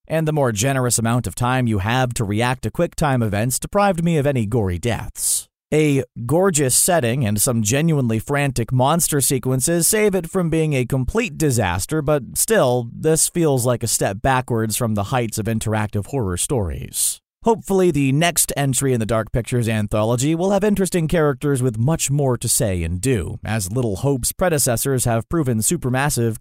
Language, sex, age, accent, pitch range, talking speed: English, male, 30-49, American, 115-155 Hz, 175 wpm